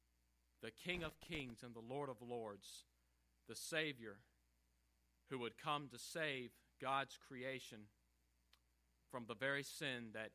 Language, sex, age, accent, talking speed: English, male, 40-59, American, 135 wpm